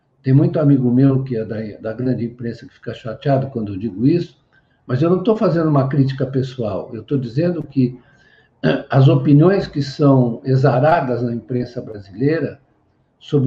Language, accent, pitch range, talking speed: Portuguese, Brazilian, 125-150 Hz, 170 wpm